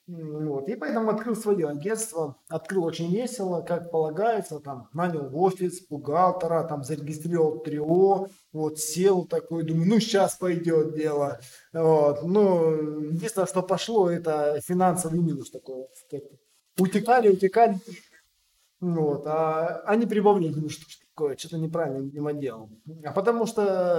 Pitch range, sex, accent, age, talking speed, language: 155-190 Hz, male, native, 20-39, 115 wpm, Russian